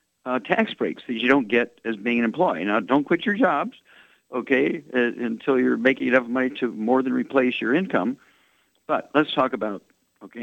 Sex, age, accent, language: male, 50-69, American, English